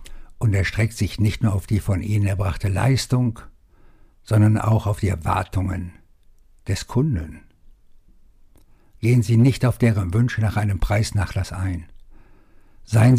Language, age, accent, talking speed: German, 60-79, German, 130 wpm